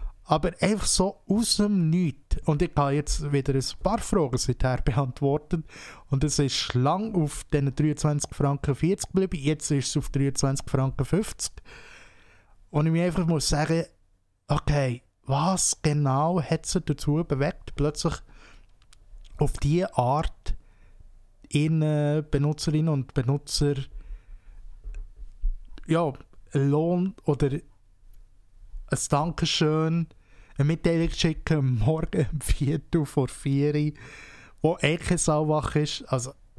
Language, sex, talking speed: German, male, 120 wpm